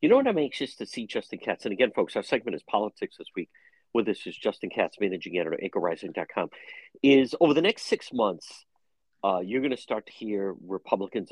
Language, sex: English, male